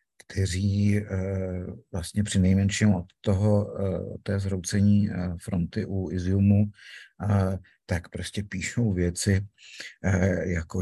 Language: Slovak